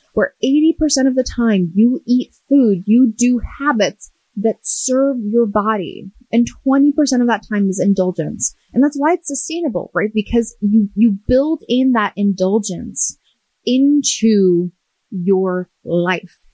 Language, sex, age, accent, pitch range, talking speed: English, female, 30-49, American, 200-260 Hz, 140 wpm